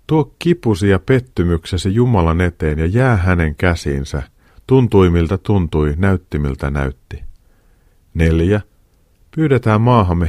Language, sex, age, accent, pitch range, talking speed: Finnish, male, 40-59, native, 80-110 Hz, 110 wpm